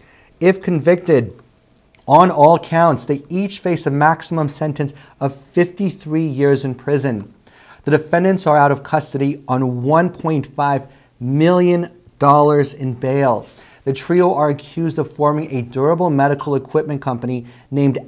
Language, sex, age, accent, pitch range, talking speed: English, male, 30-49, American, 130-160 Hz, 130 wpm